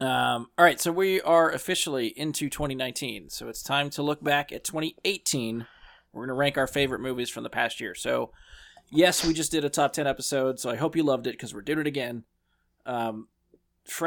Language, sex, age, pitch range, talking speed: English, male, 20-39, 120-145 Hz, 210 wpm